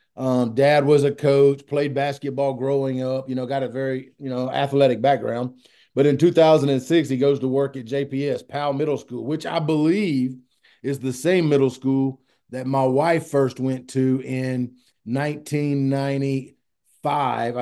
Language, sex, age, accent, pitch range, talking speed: English, male, 30-49, American, 130-150 Hz, 155 wpm